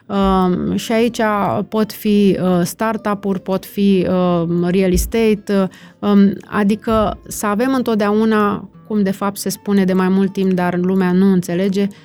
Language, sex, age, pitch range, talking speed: Romanian, female, 30-49, 185-215 Hz, 155 wpm